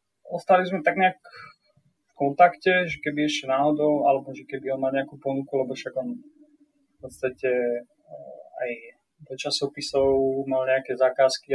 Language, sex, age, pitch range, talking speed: Slovak, male, 20-39, 130-145 Hz, 145 wpm